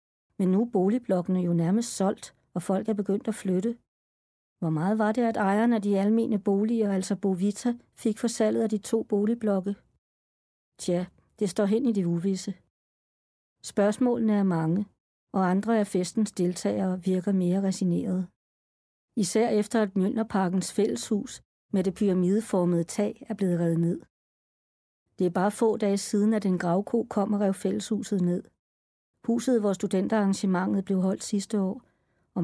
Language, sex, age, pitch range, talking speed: Danish, female, 60-79, 185-220 Hz, 155 wpm